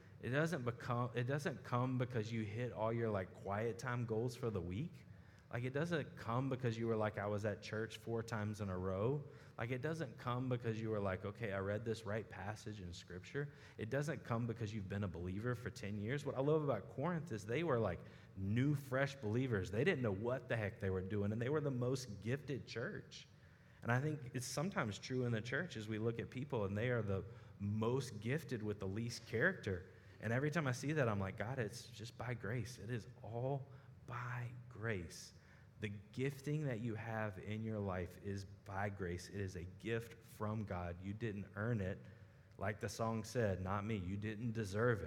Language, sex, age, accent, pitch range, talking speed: English, male, 30-49, American, 105-125 Hz, 215 wpm